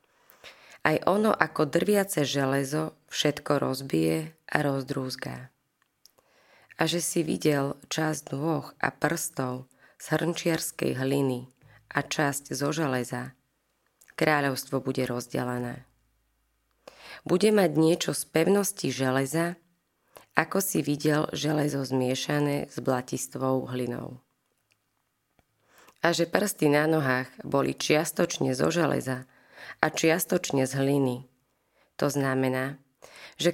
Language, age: Slovak, 20-39